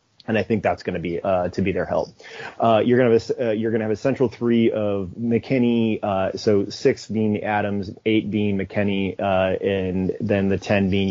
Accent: American